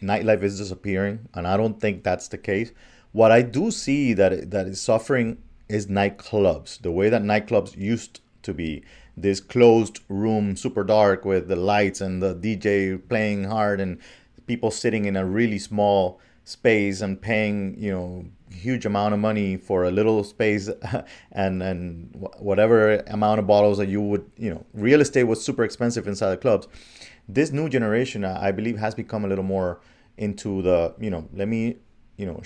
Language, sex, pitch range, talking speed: English, male, 95-115 Hz, 180 wpm